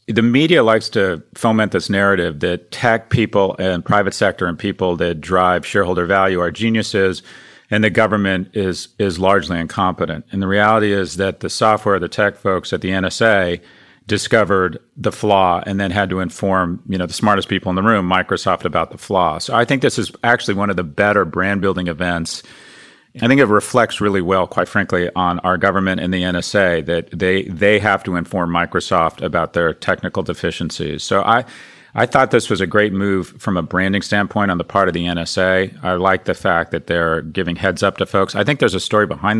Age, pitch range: 40-59, 90-100 Hz